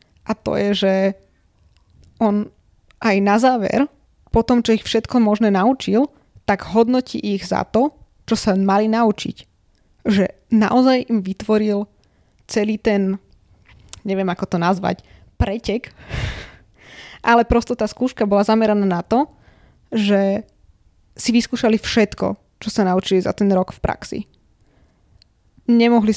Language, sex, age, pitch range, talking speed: Slovak, female, 20-39, 190-225 Hz, 130 wpm